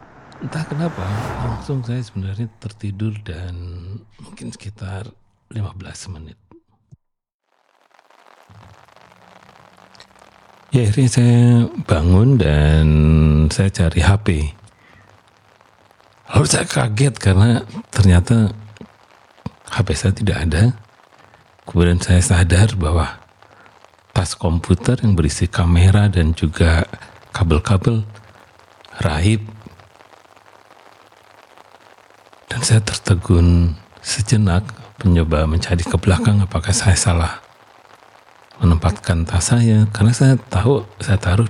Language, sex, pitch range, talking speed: Indonesian, male, 90-110 Hz, 85 wpm